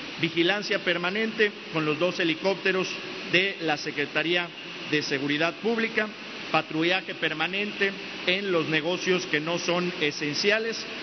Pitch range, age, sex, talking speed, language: 165-200 Hz, 50-69, male, 115 wpm, Spanish